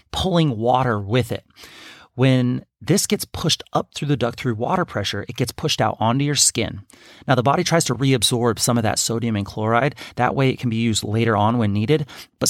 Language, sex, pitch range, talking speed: English, male, 115-145 Hz, 215 wpm